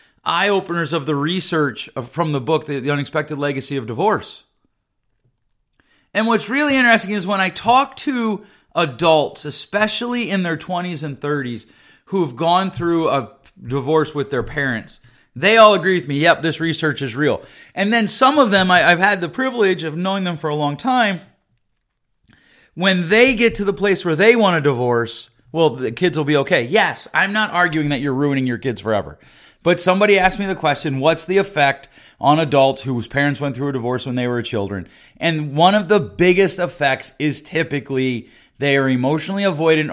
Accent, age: American, 30-49